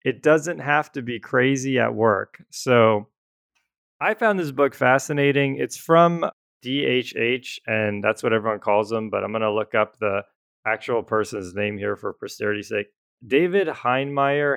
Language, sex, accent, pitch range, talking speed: English, male, American, 110-140 Hz, 160 wpm